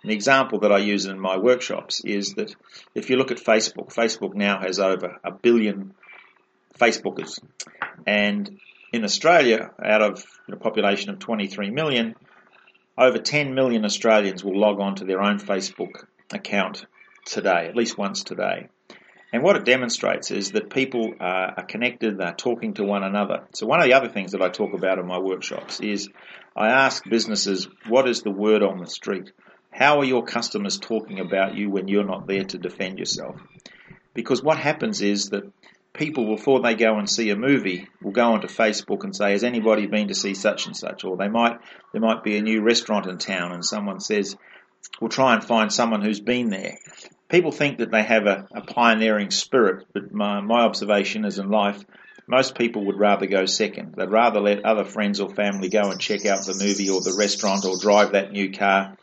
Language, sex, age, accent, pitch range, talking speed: English, male, 40-59, Australian, 100-115 Hz, 195 wpm